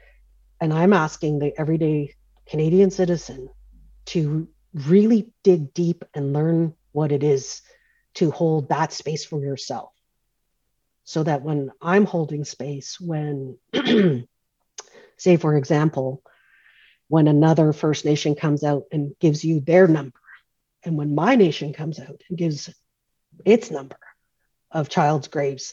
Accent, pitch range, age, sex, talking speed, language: American, 145-175 Hz, 40-59, female, 130 wpm, English